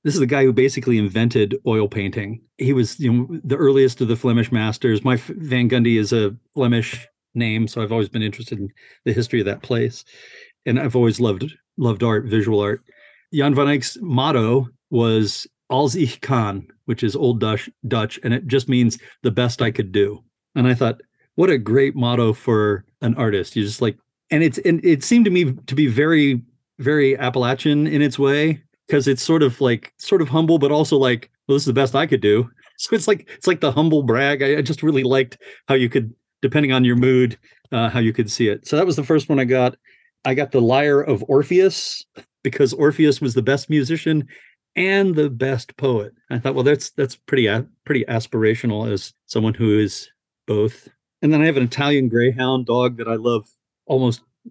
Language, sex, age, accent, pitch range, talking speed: English, male, 40-59, American, 115-140 Hz, 210 wpm